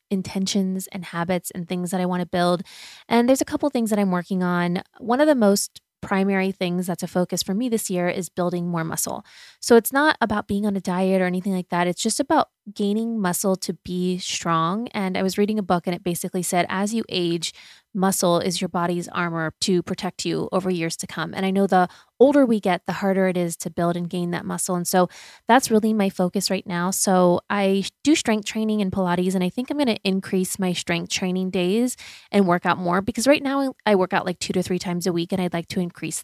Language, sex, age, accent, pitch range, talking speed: English, female, 20-39, American, 180-210 Hz, 240 wpm